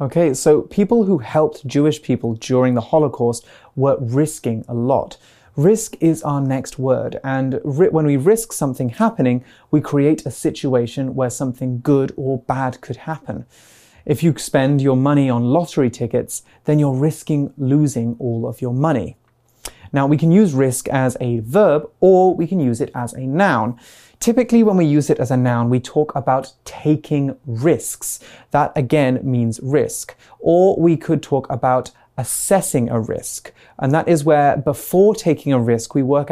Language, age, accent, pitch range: Chinese, 30-49, British, 125-150 Hz